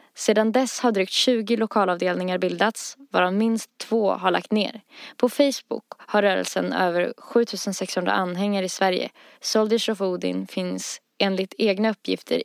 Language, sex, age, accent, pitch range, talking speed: Swedish, female, 20-39, native, 190-235 Hz, 140 wpm